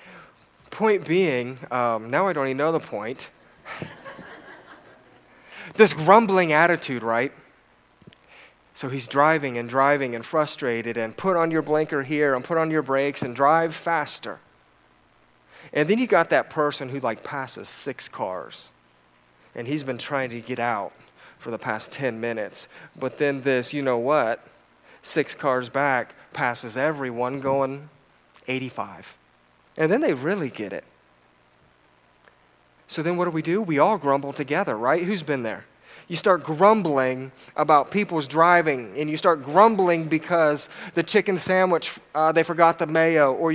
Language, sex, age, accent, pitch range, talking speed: English, male, 30-49, American, 130-170 Hz, 155 wpm